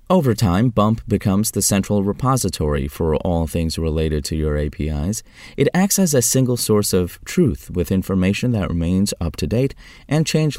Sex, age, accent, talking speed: male, 30-49, American, 175 wpm